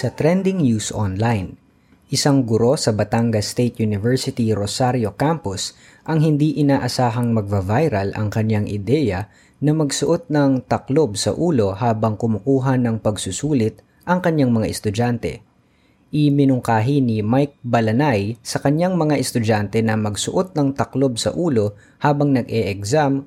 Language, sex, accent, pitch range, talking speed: Filipino, female, native, 105-140 Hz, 125 wpm